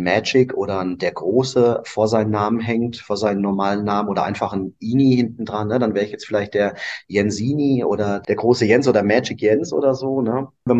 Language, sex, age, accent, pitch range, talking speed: German, male, 30-49, German, 105-125 Hz, 205 wpm